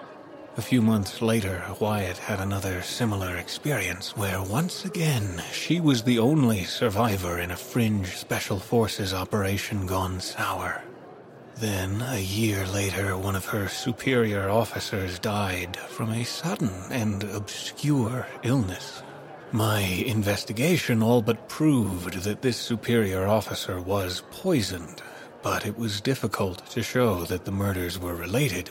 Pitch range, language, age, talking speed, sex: 95-115 Hz, English, 30-49, 130 wpm, male